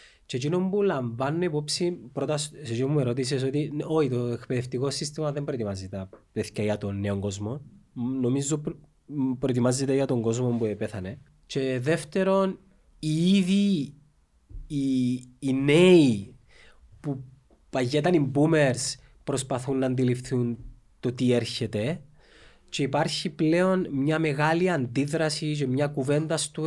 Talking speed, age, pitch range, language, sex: 130 wpm, 20-39, 130-170 Hz, Greek, male